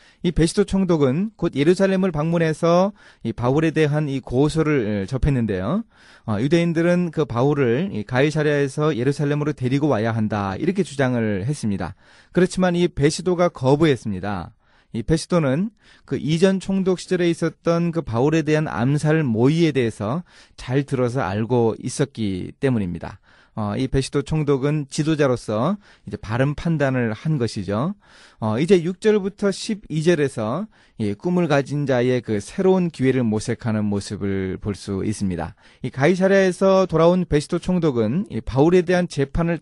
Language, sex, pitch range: Korean, male, 115-170 Hz